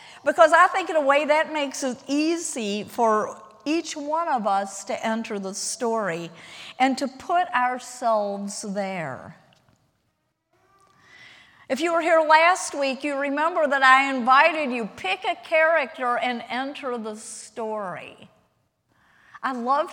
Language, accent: English, American